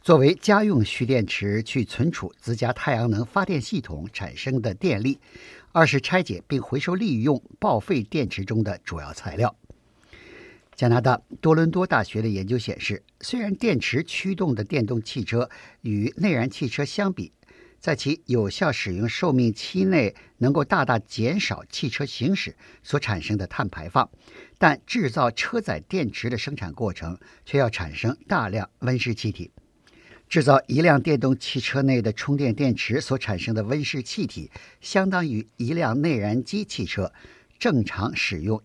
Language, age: Chinese, 50-69